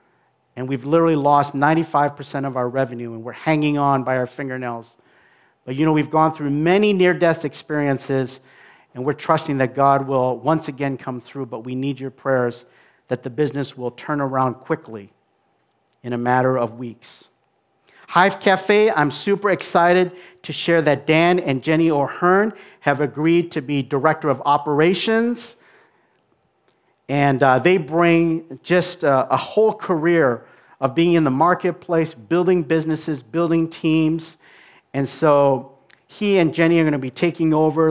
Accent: American